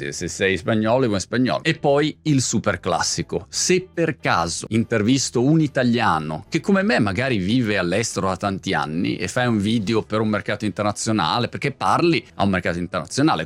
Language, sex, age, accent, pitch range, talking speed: Italian, male, 30-49, native, 110-145 Hz, 175 wpm